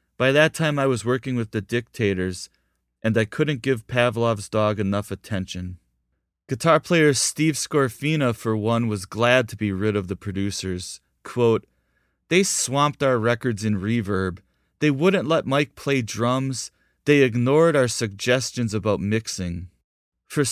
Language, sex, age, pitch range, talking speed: English, male, 30-49, 100-140 Hz, 150 wpm